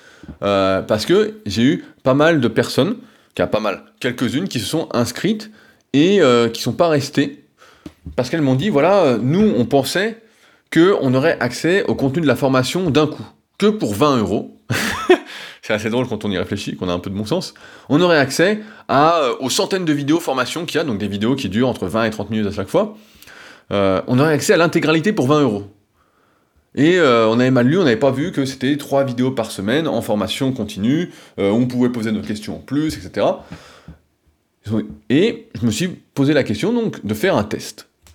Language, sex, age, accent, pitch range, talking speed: French, male, 20-39, French, 110-165 Hz, 210 wpm